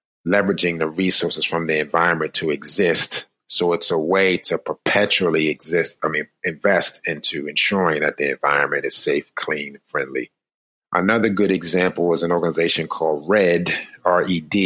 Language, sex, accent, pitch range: English, male, American, 80-95 Hz